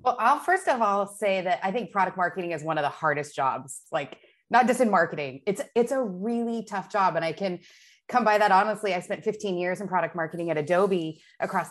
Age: 30-49